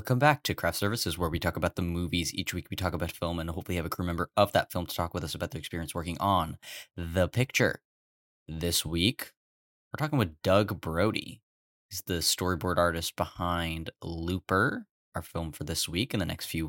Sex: male